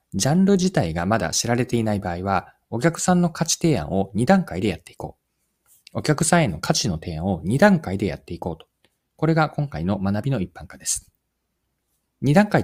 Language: Japanese